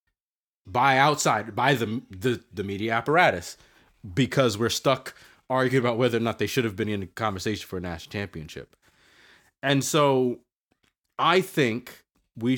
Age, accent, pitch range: 30-49, American, 95-140 Hz